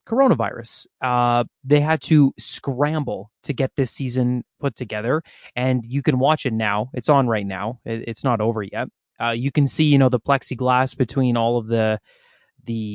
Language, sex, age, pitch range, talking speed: English, male, 20-39, 120-145 Hz, 180 wpm